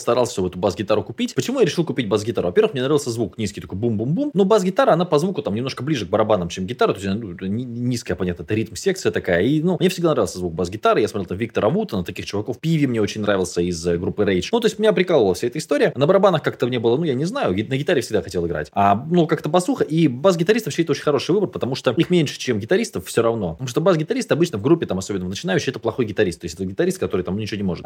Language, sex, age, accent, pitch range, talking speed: Russian, male, 20-39, native, 105-180 Hz, 260 wpm